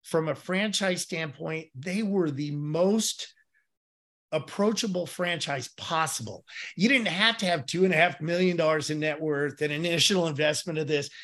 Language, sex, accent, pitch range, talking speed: English, male, American, 150-190 Hz, 140 wpm